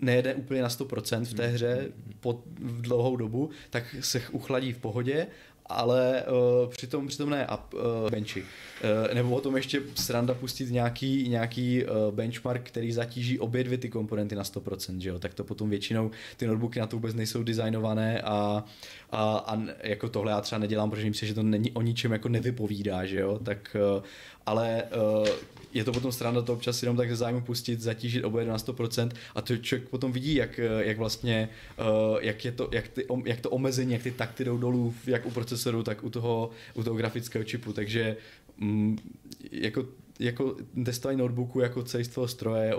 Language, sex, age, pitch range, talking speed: Czech, male, 20-39, 110-125 Hz, 185 wpm